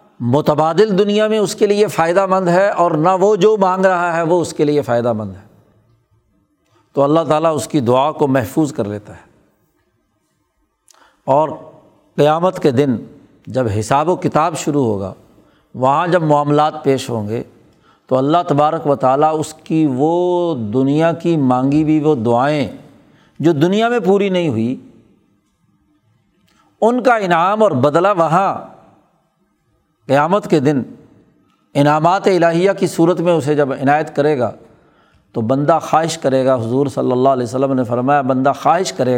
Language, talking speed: Urdu, 160 wpm